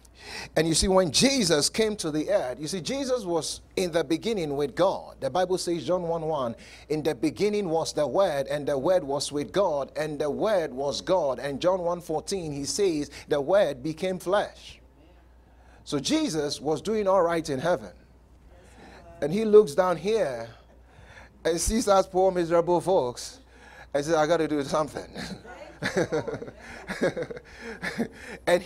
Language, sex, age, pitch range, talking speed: English, male, 30-49, 140-195 Hz, 160 wpm